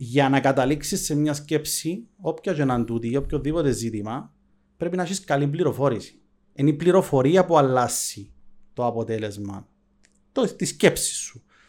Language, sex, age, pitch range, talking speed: Greek, male, 30-49, 125-180 Hz, 185 wpm